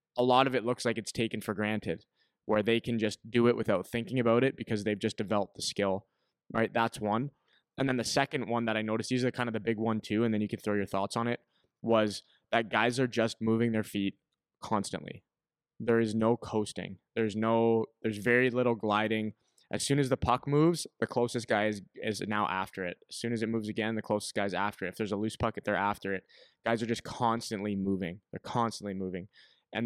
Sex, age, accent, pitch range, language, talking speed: male, 20-39, American, 105-120 Hz, English, 230 wpm